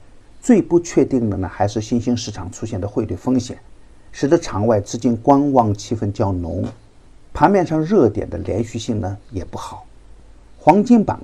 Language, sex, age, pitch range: Chinese, male, 50-69, 100-125 Hz